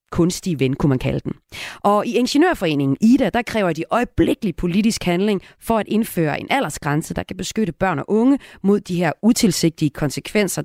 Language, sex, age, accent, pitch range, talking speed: Danish, female, 30-49, native, 150-205 Hz, 180 wpm